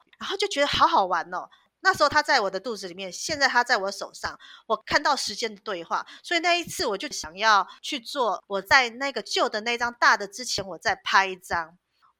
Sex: female